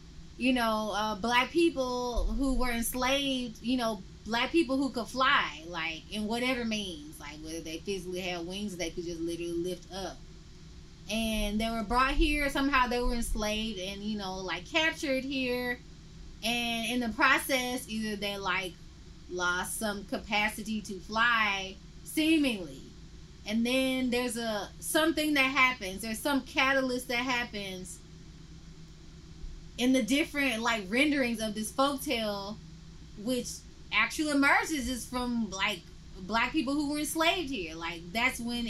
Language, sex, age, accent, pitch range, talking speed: English, female, 20-39, American, 200-260 Hz, 145 wpm